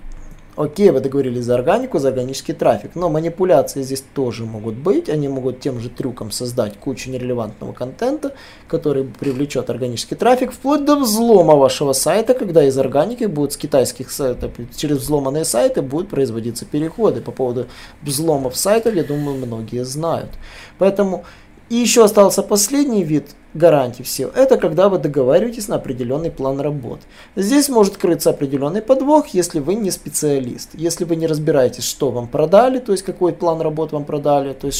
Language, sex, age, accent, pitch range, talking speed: Russian, male, 20-39, native, 135-190 Hz, 160 wpm